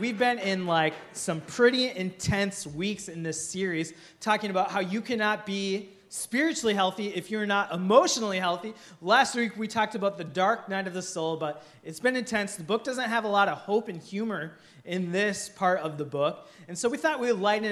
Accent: American